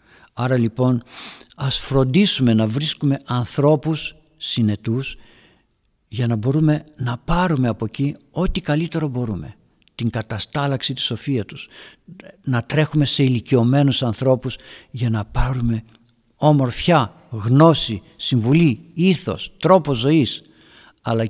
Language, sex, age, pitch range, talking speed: Greek, male, 60-79, 115-145 Hz, 105 wpm